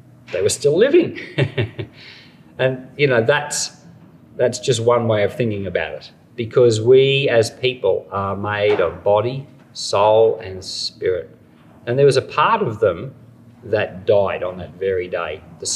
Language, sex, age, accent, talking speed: English, male, 40-59, Australian, 155 wpm